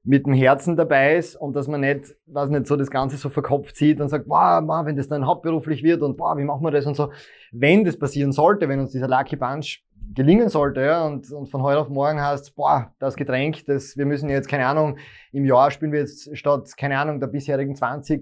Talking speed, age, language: 245 wpm, 20-39, German